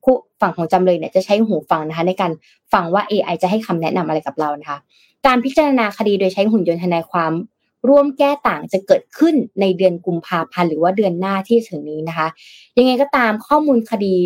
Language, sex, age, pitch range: Thai, female, 20-39, 175-230 Hz